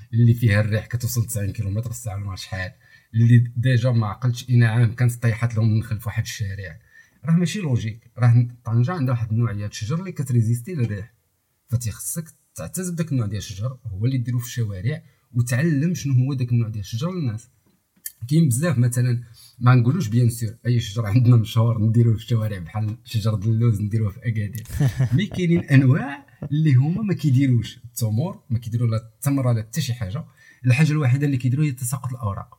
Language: Arabic